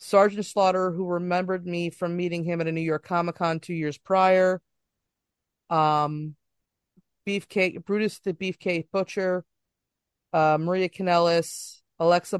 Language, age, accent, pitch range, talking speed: English, 30-49, American, 150-175 Hz, 130 wpm